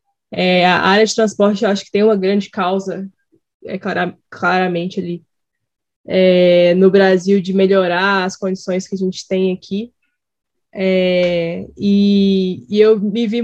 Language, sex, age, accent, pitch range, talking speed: Portuguese, female, 10-29, Brazilian, 195-245 Hz, 150 wpm